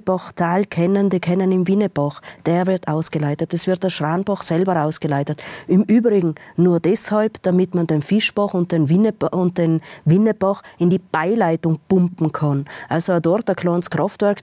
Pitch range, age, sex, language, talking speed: 165-195 Hz, 30-49, female, German, 165 wpm